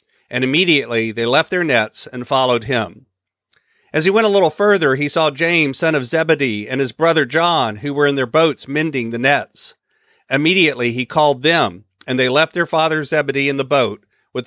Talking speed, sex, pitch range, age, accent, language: 195 wpm, male, 120-180 Hz, 40-59, American, English